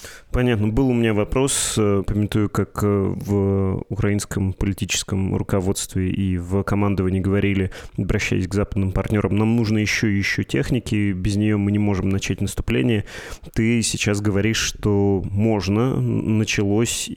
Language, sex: Russian, male